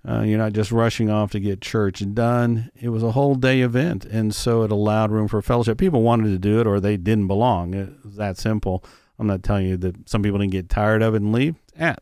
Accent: American